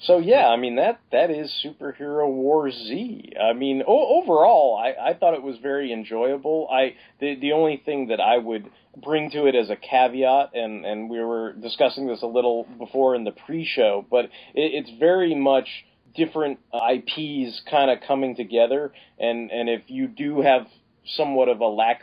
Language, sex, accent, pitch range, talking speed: English, male, American, 115-150 Hz, 185 wpm